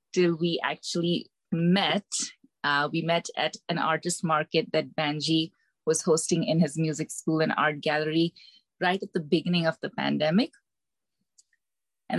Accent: Indian